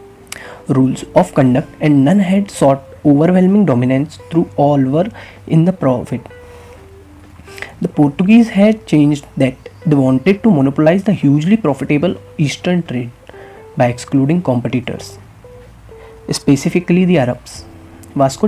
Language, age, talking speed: English, 20-39, 115 wpm